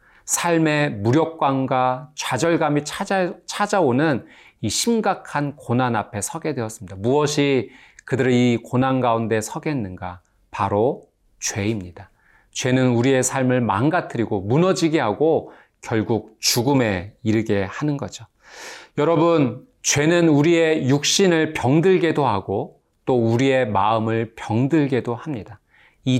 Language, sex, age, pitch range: Korean, male, 40-59, 110-150 Hz